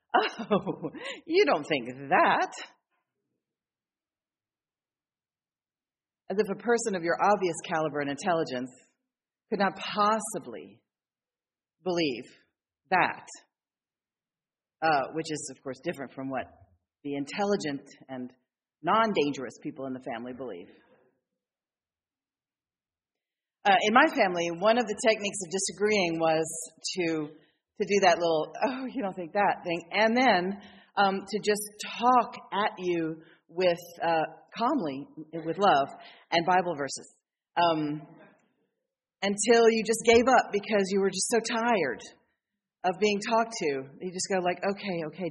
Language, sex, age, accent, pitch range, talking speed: English, female, 40-59, American, 155-210 Hz, 130 wpm